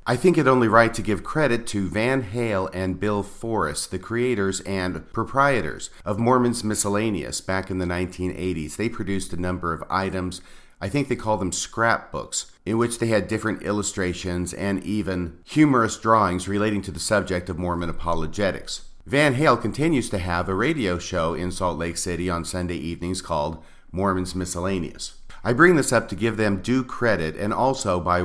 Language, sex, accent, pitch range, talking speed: English, male, American, 90-110 Hz, 180 wpm